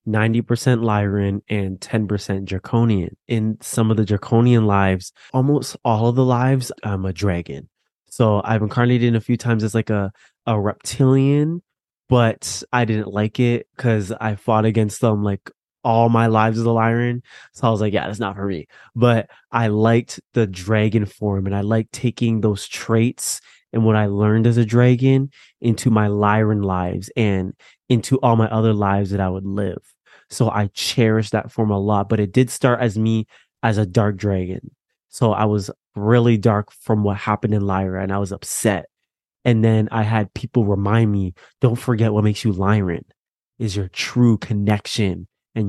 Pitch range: 100-120 Hz